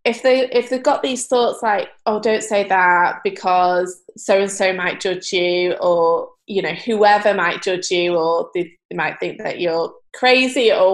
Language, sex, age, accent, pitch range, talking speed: English, female, 20-39, British, 190-265 Hz, 175 wpm